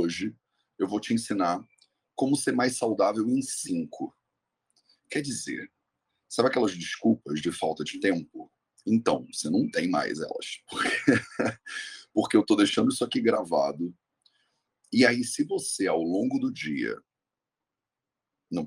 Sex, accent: male, Brazilian